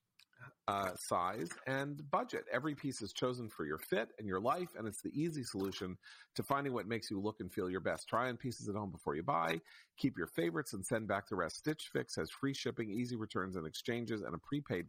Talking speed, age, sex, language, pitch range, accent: 230 wpm, 40-59, male, English, 100-135 Hz, American